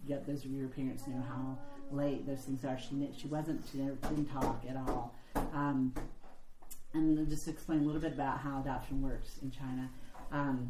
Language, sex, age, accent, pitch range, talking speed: English, female, 40-59, American, 130-145 Hz, 185 wpm